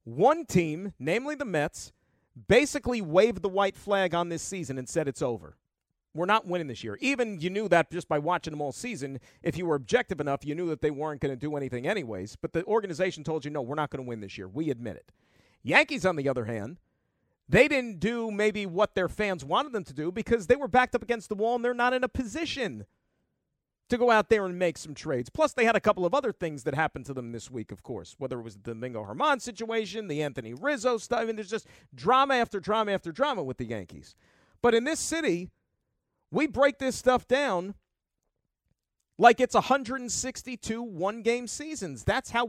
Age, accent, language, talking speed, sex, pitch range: 40-59, American, English, 220 wpm, male, 150-245 Hz